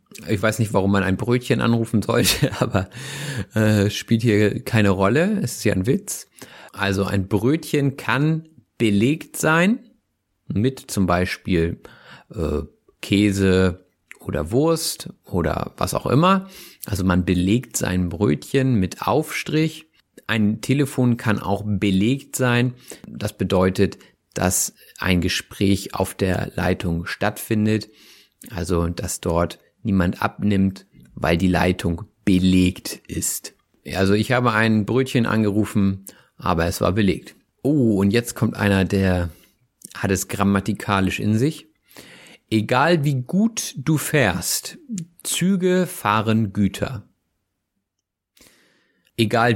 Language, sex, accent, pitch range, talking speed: German, male, German, 95-135 Hz, 120 wpm